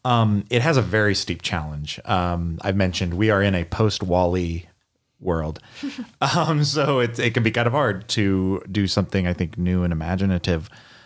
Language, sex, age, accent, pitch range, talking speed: English, male, 30-49, American, 85-105 Hz, 185 wpm